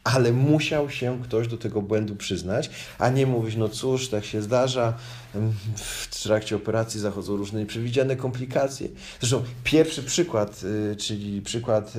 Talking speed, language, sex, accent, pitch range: 140 wpm, Polish, male, native, 105-125 Hz